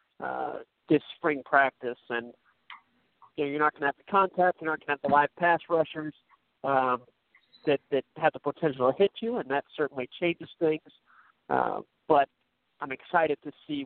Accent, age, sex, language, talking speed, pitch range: American, 50-69, male, English, 185 wpm, 135-155 Hz